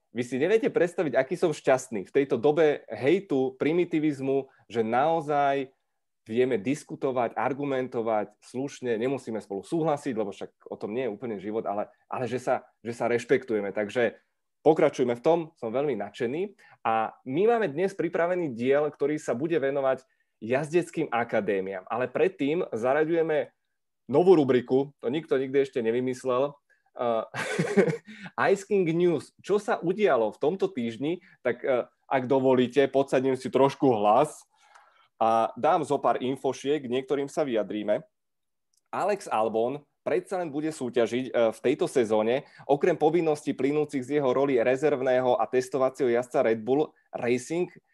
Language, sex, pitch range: Czech, male, 125-155 Hz